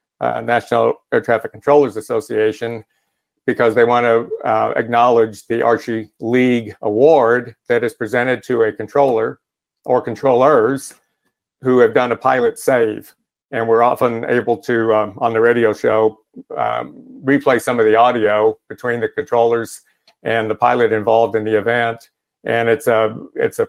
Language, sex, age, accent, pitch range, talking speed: English, male, 50-69, American, 110-130 Hz, 155 wpm